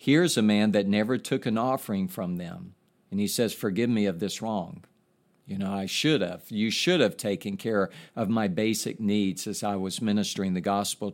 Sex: male